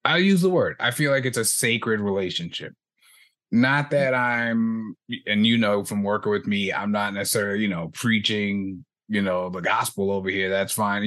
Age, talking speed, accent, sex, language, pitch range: 30-49, 190 wpm, American, male, English, 105-125 Hz